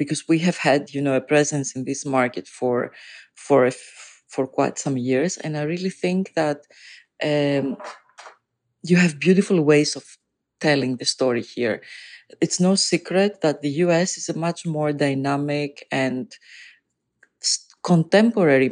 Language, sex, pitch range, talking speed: English, female, 135-170 Hz, 140 wpm